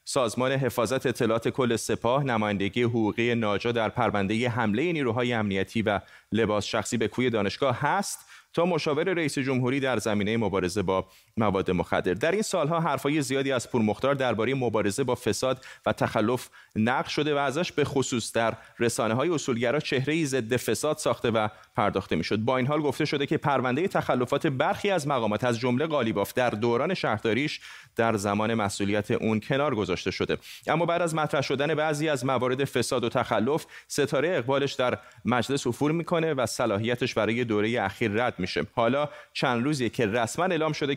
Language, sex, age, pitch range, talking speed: Persian, male, 30-49, 110-140 Hz, 170 wpm